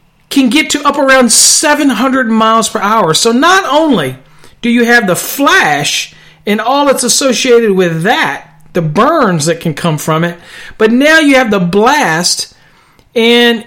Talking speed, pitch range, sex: 160 wpm, 185-240 Hz, male